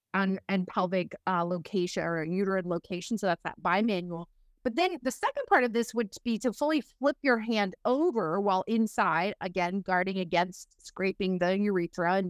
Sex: female